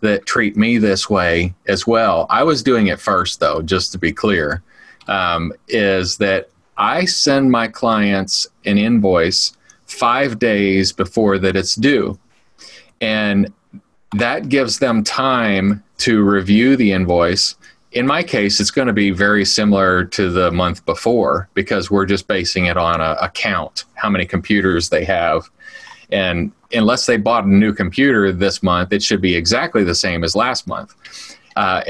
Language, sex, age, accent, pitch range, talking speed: English, male, 30-49, American, 95-115 Hz, 160 wpm